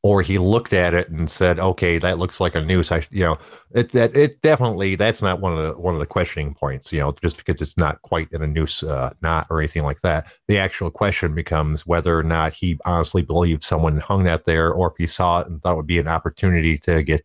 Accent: American